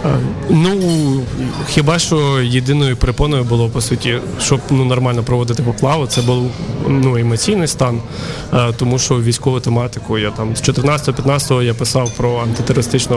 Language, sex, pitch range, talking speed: Ukrainian, male, 120-140 Hz, 140 wpm